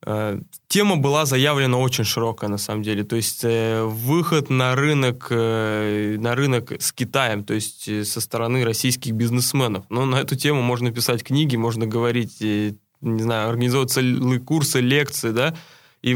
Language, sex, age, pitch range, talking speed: Russian, male, 20-39, 115-145 Hz, 145 wpm